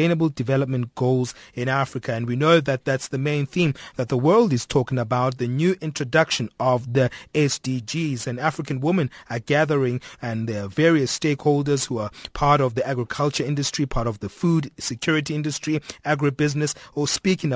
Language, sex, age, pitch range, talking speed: English, male, 30-49, 130-155 Hz, 170 wpm